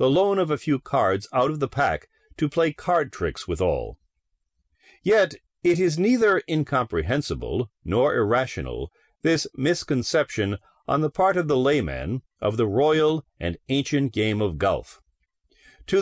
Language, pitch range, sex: English, 105-165 Hz, male